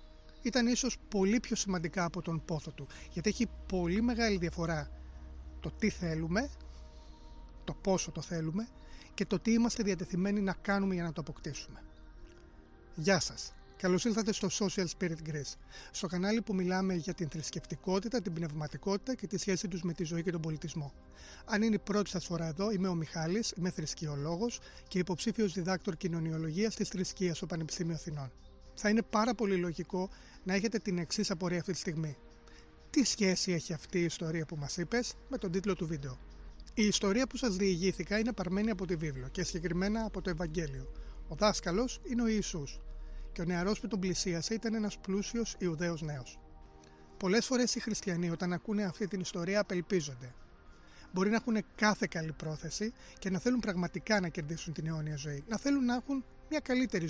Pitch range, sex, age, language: 160-205 Hz, male, 30-49, Greek